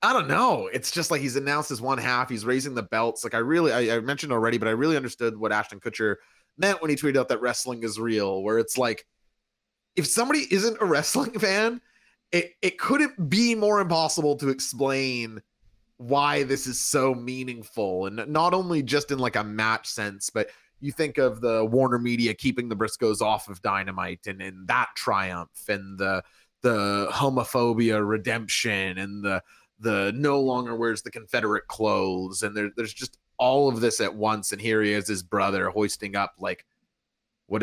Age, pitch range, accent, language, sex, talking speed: 30-49, 105-140 Hz, American, English, male, 190 wpm